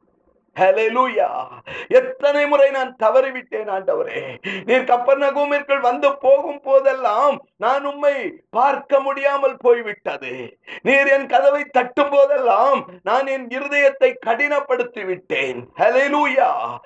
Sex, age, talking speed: male, 50-69, 95 wpm